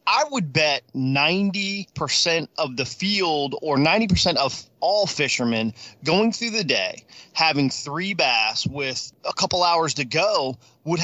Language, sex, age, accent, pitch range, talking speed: English, male, 30-49, American, 125-160 Hz, 140 wpm